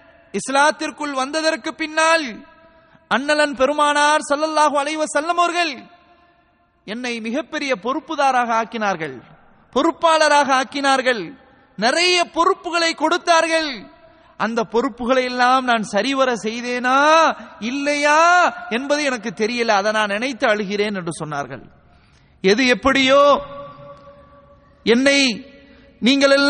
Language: English